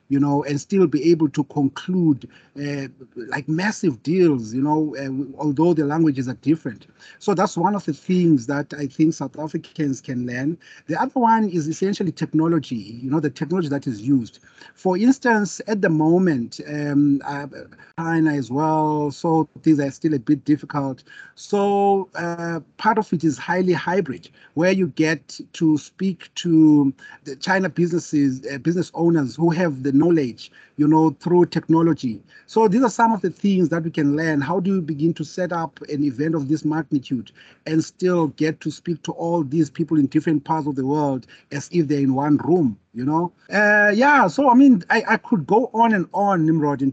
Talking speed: 190 wpm